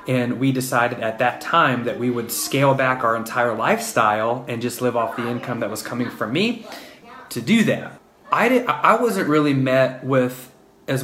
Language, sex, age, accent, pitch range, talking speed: English, male, 30-49, American, 115-135 Hz, 195 wpm